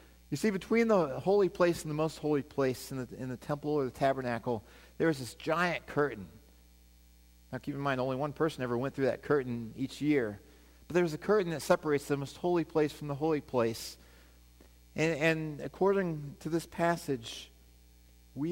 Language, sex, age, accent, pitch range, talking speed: English, male, 40-59, American, 90-145 Hz, 190 wpm